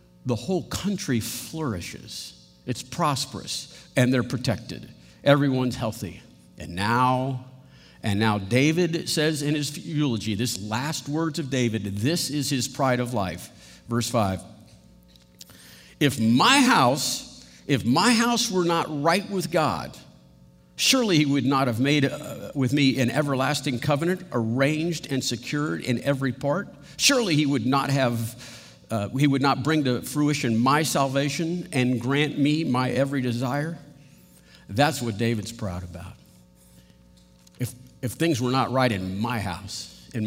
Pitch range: 115-145 Hz